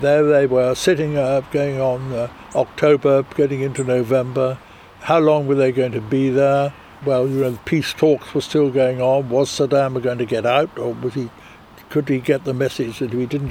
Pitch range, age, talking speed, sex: 125-150 Hz, 60-79, 205 wpm, male